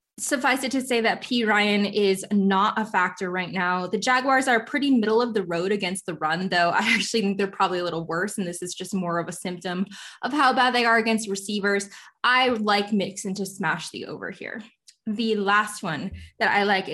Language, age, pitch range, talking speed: English, 20-39, 190-230 Hz, 220 wpm